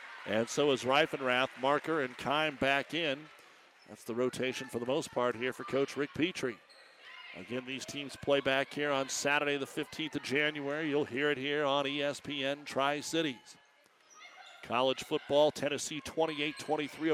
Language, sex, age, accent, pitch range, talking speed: English, male, 50-69, American, 125-150 Hz, 155 wpm